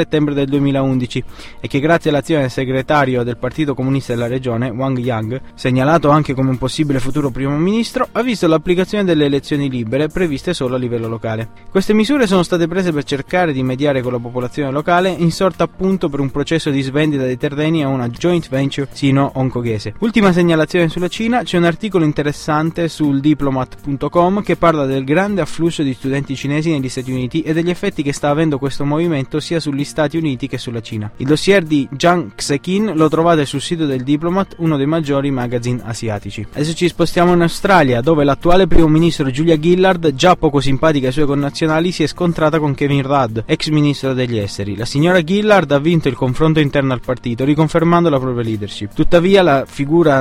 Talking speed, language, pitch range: 190 wpm, Italian, 135-170 Hz